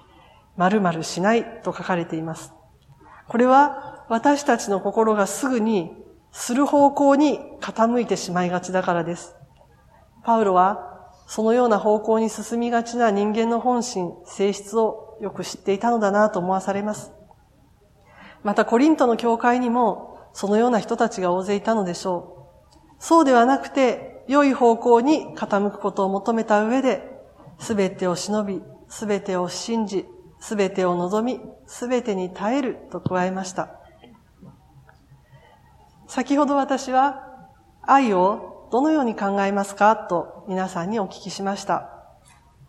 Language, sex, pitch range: Japanese, female, 190-250 Hz